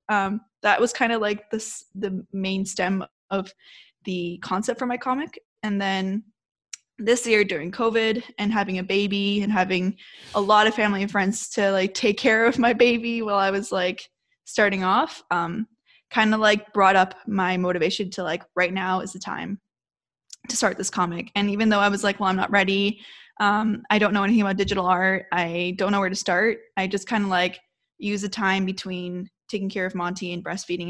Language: English